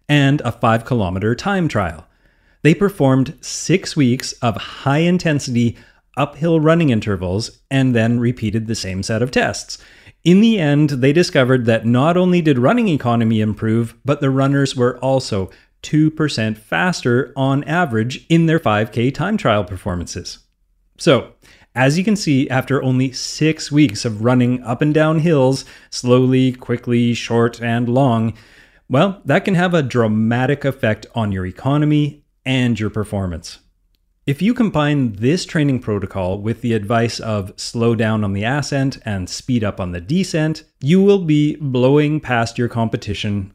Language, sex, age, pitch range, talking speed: English, male, 30-49, 105-145 Hz, 155 wpm